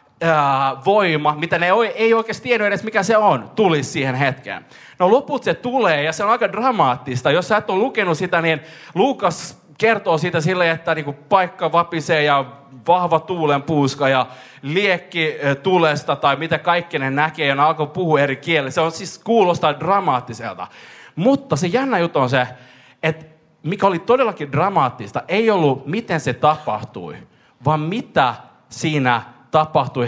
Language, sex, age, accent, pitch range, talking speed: Finnish, male, 30-49, native, 130-180 Hz, 155 wpm